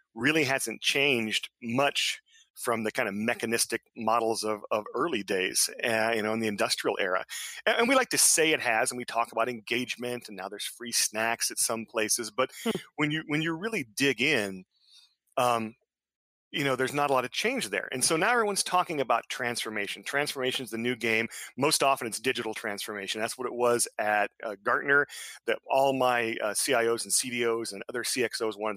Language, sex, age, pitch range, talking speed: English, male, 40-59, 110-135 Hz, 200 wpm